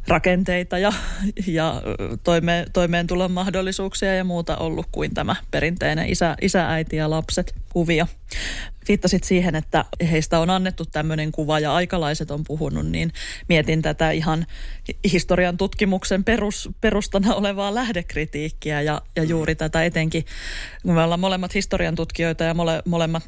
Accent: native